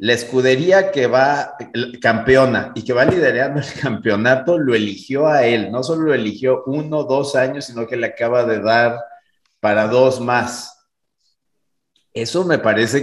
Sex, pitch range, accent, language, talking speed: male, 110-135 Hz, Mexican, Spanish, 155 wpm